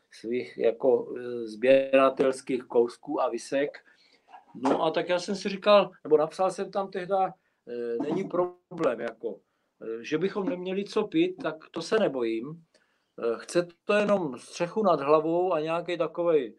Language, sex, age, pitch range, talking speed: Czech, male, 50-69, 125-180 Hz, 150 wpm